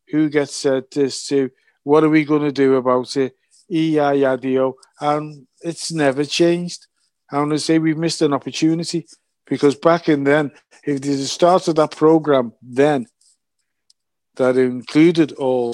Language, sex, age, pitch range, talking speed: English, male, 50-69, 130-155 Hz, 155 wpm